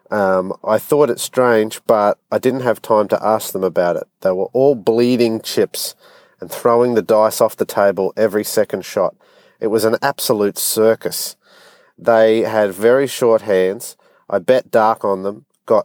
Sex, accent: male, Australian